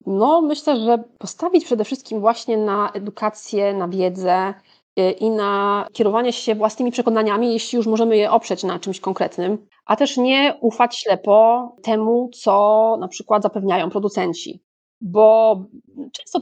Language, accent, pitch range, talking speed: Polish, native, 200-235 Hz, 140 wpm